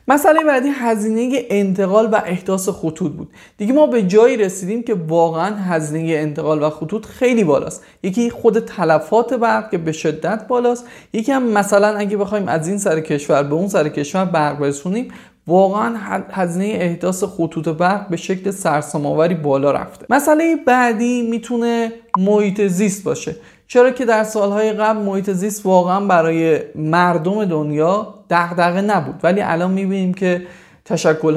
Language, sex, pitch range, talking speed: Persian, male, 155-210 Hz, 150 wpm